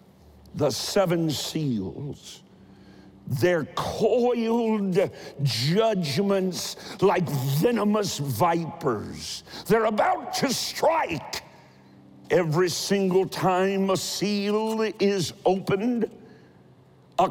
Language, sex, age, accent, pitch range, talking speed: English, male, 60-79, American, 145-210 Hz, 75 wpm